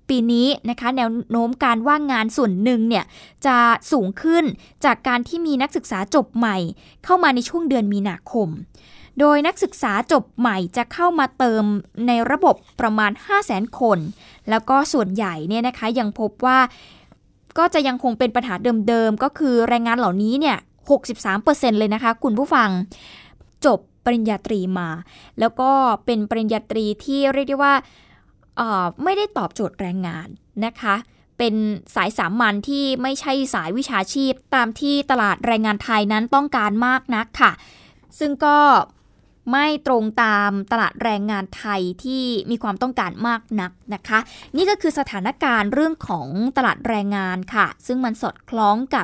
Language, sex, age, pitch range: Thai, female, 20-39, 210-270 Hz